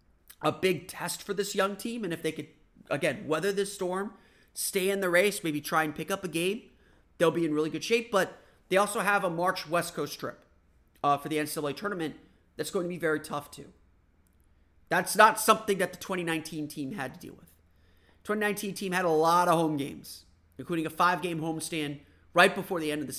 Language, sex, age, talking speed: English, male, 30-49, 210 wpm